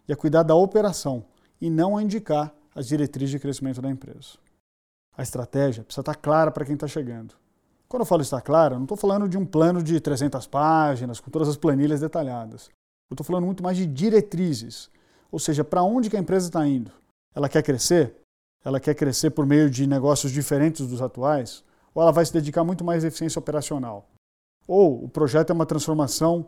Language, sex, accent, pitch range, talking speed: Portuguese, male, Brazilian, 135-170 Hz, 195 wpm